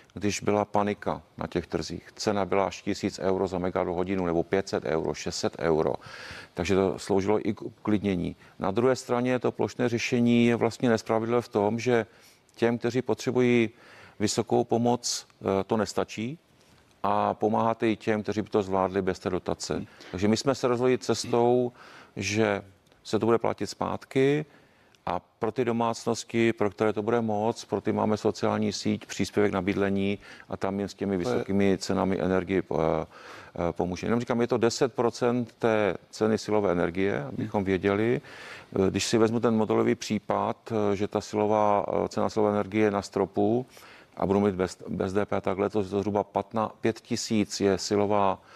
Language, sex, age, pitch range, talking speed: Czech, male, 40-59, 95-115 Hz, 165 wpm